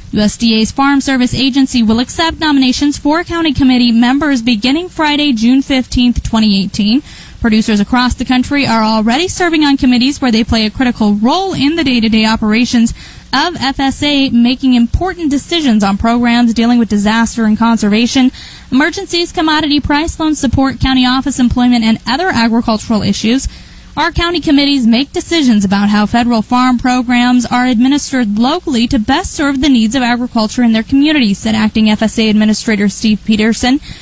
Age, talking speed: 10-29, 155 wpm